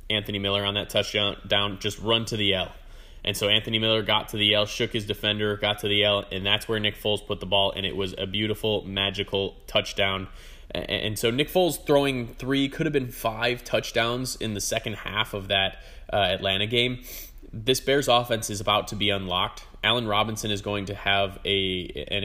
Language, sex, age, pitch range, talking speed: English, male, 20-39, 100-110 Hz, 200 wpm